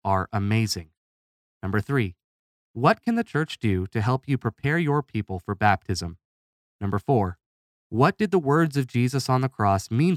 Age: 30-49